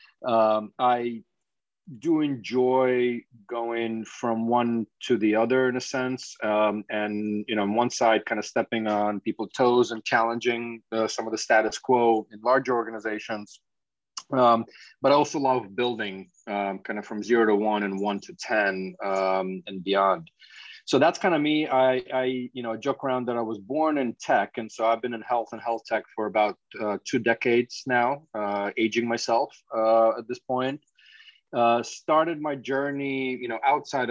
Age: 30-49